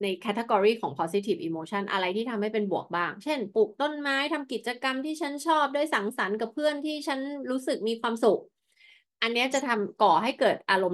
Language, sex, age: Thai, female, 20-39